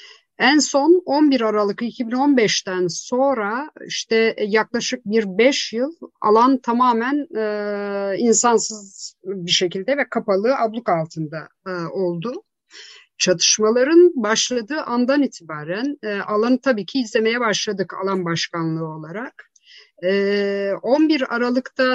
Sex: female